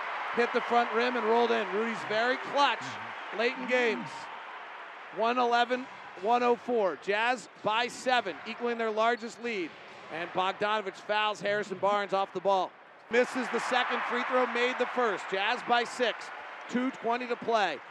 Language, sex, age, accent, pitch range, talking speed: English, male, 40-59, American, 215-245 Hz, 145 wpm